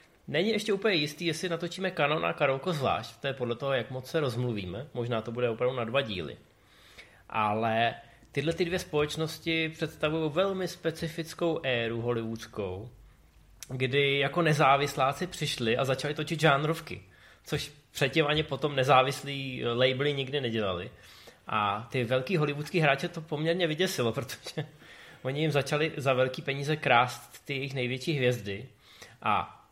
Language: Czech